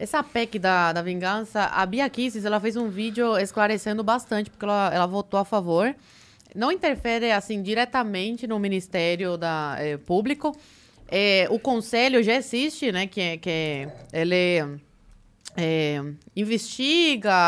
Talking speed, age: 115 wpm, 20-39